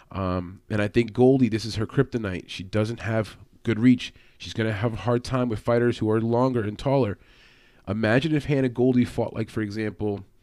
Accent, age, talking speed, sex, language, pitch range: American, 30-49, 205 wpm, male, English, 105-125 Hz